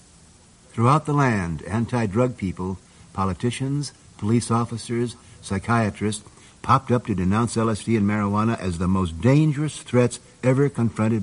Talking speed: 125 wpm